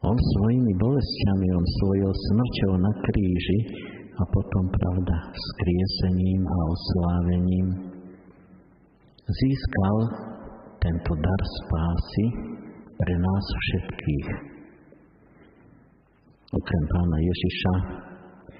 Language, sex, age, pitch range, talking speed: Slovak, male, 50-69, 85-100 Hz, 80 wpm